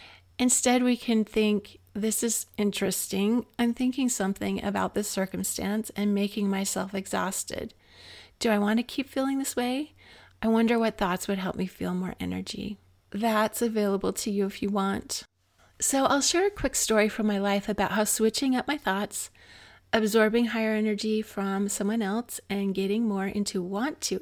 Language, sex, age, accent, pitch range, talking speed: English, female, 30-49, American, 195-225 Hz, 170 wpm